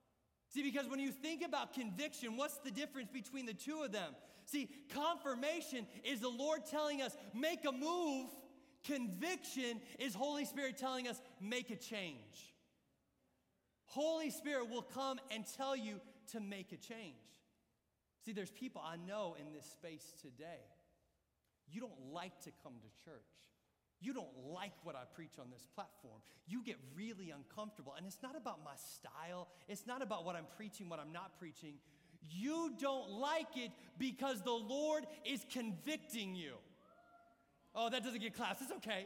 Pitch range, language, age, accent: 205-290 Hz, English, 40-59, American